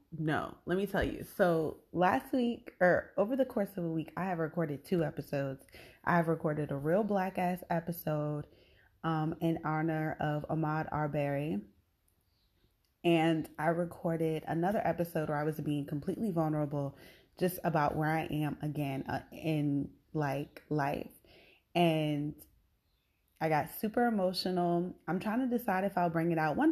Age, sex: 20-39, female